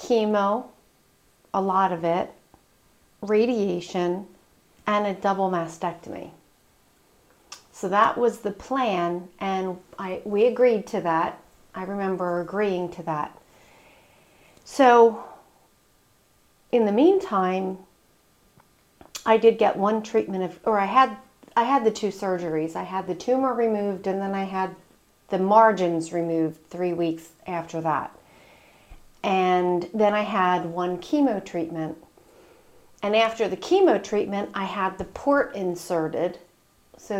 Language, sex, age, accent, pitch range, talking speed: English, female, 40-59, American, 175-215 Hz, 125 wpm